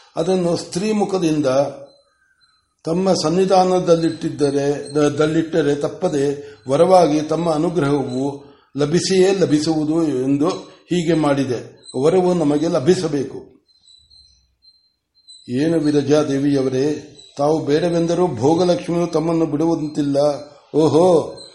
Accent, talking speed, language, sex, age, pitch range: native, 65 wpm, Kannada, male, 60-79, 140-170 Hz